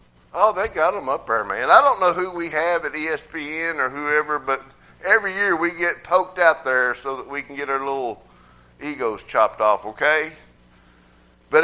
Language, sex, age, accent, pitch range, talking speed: English, male, 50-69, American, 125-170 Hz, 190 wpm